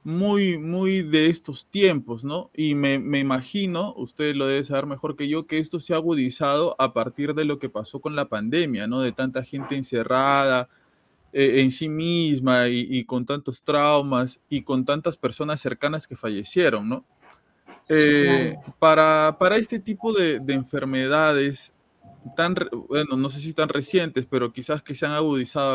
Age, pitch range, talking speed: 20-39, 135-160 Hz, 170 wpm